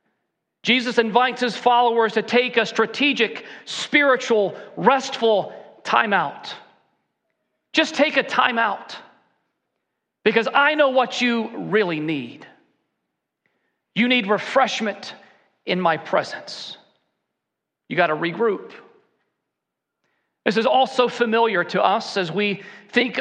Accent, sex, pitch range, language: American, male, 190-235 Hz, English